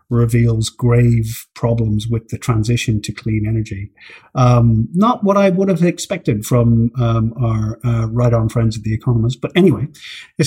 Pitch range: 115-140 Hz